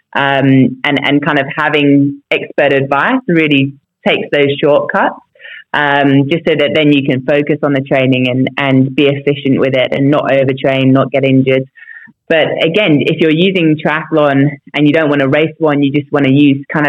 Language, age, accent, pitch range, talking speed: English, 20-39, British, 135-155 Hz, 190 wpm